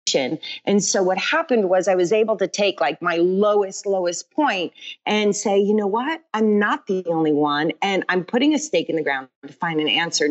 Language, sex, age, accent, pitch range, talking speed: English, female, 40-59, American, 175-215 Hz, 215 wpm